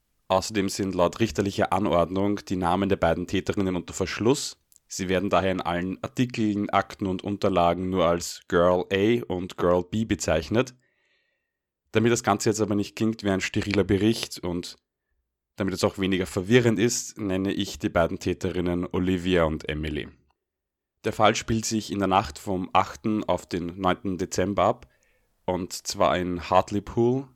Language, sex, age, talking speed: German, male, 30-49, 160 wpm